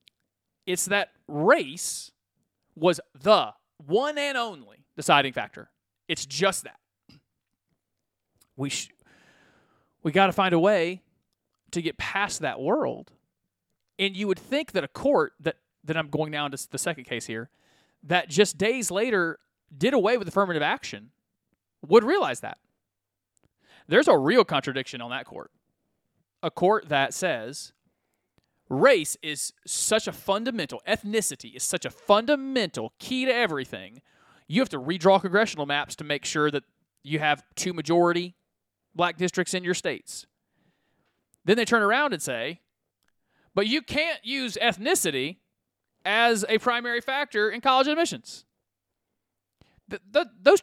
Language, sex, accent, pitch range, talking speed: English, male, American, 145-215 Hz, 140 wpm